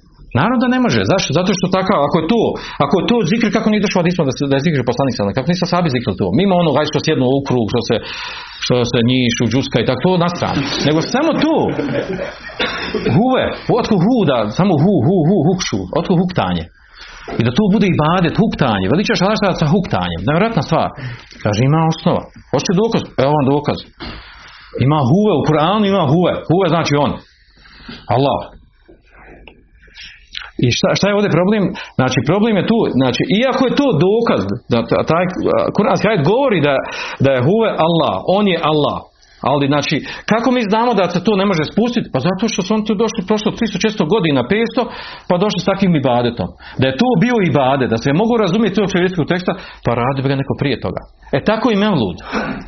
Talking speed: 190 wpm